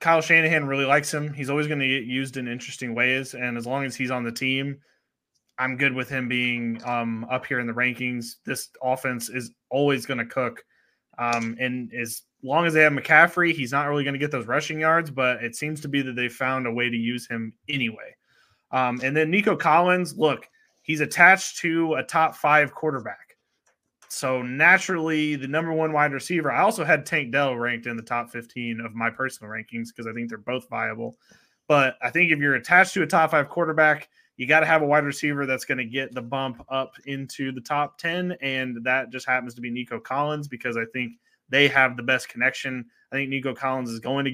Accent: American